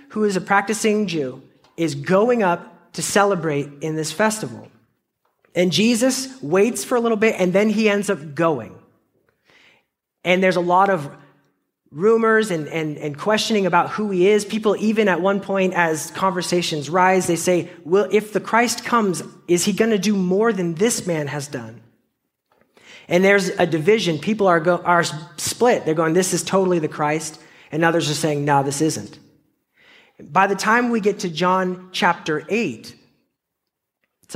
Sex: male